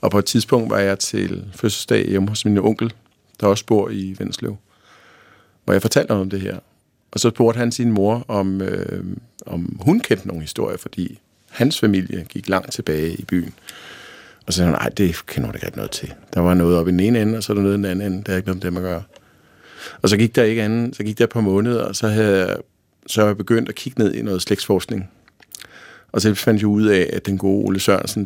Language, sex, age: Danish, male, 50-69